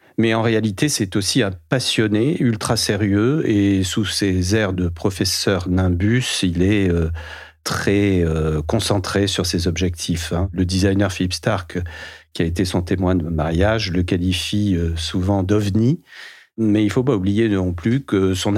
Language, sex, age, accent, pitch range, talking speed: French, male, 40-59, French, 90-105 Hz, 165 wpm